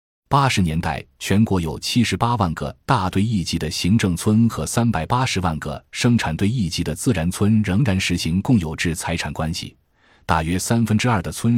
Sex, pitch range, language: male, 85-115 Hz, Chinese